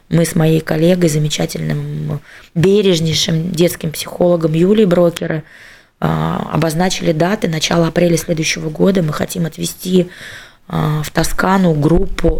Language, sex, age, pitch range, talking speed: Russian, female, 20-39, 160-185 Hz, 105 wpm